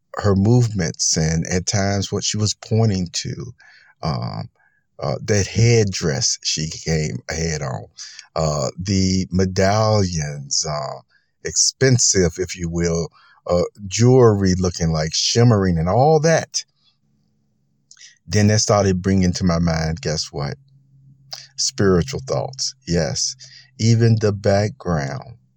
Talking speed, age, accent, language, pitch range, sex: 115 wpm, 50-69, American, English, 85-110 Hz, male